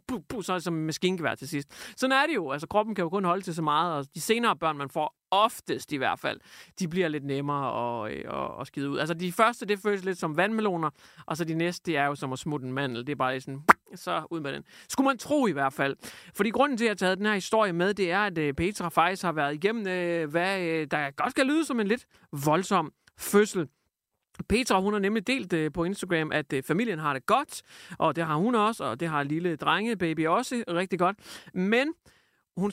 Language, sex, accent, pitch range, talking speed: English, male, Danish, 155-215 Hz, 235 wpm